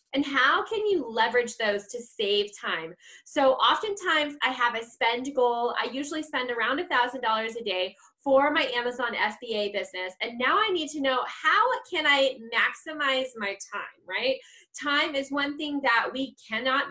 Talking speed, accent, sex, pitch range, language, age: 170 wpm, American, female, 235-330 Hz, English, 10-29